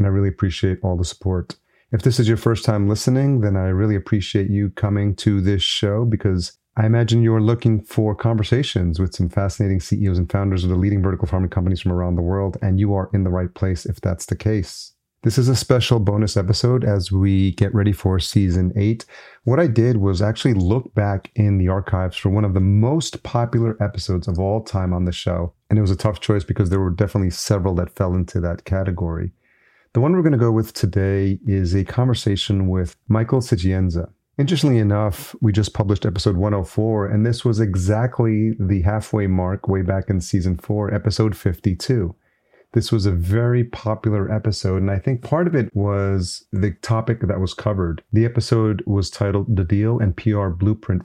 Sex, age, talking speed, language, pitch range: male, 30-49, 200 wpm, English, 95-110 Hz